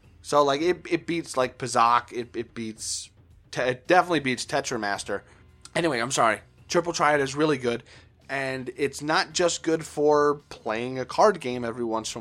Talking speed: 180 wpm